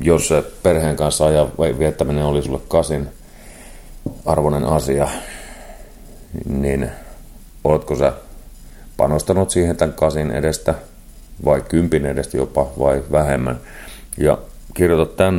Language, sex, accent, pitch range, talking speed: Finnish, male, native, 70-80 Hz, 110 wpm